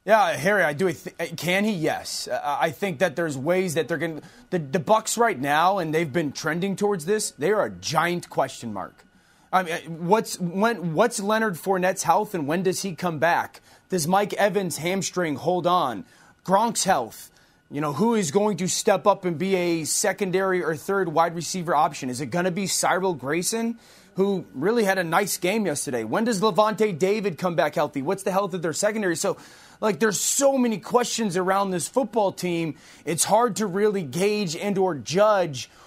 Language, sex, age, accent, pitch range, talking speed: English, male, 30-49, American, 165-205 Hz, 195 wpm